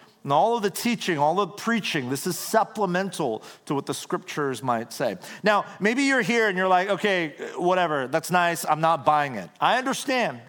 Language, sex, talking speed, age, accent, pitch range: English, male, 195 wpm, 40-59, American, 170-235 Hz